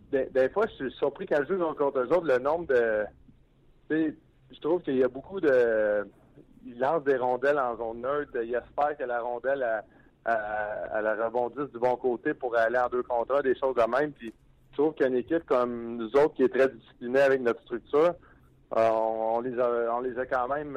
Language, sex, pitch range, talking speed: French, male, 120-150 Hz, 200 wpm